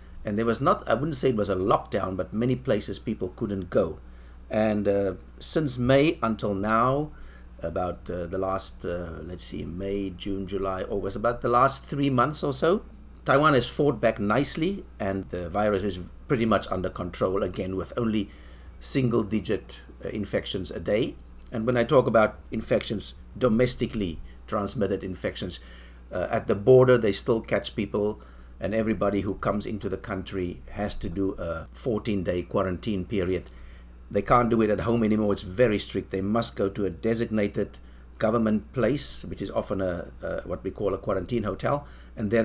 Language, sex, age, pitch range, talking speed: English, male, 60-79, 85-115 Hz, 175 wpm